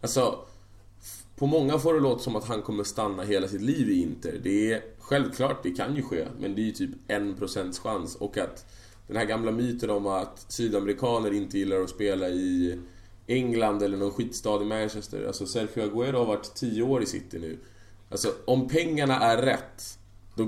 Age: 20-39